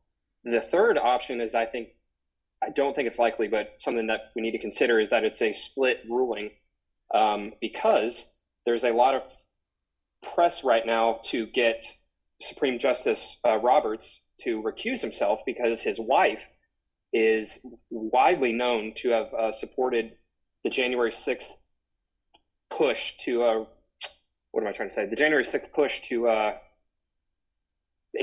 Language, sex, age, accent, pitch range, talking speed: English, male, 20-39, American, 110-130 Hz, 150 wpm